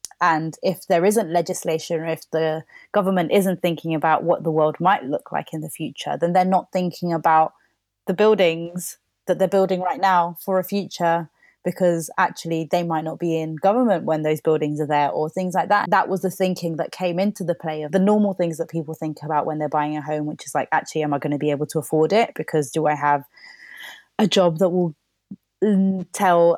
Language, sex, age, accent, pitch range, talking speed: English, female, 20-39, British, 160-185 Hz, 220 wpm